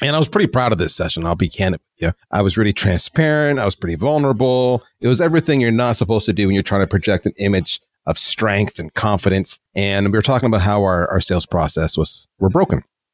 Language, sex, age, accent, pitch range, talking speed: English, male, 30-49, American, 95-130 Hz, 240 wpm